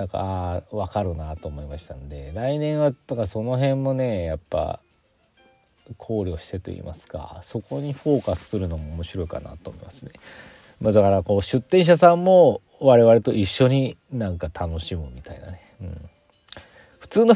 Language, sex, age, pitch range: Japanese, male, 40-59, 85-120 Hz